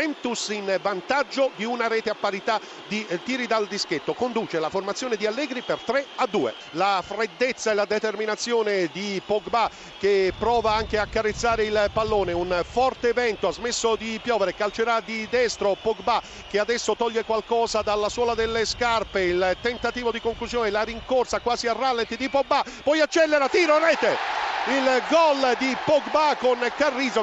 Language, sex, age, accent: Italian, male, 50-69, native